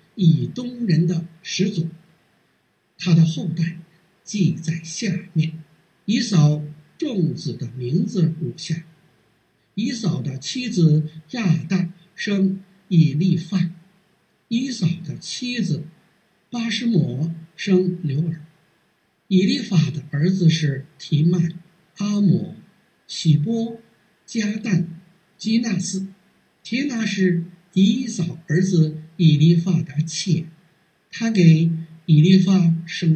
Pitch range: 165-200 Hz